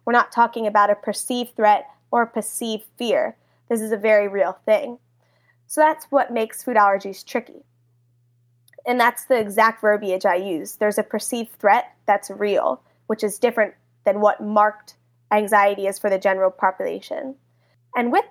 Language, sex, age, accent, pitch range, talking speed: English, female, 20-39, American, 195-235 Hz, 165 wpm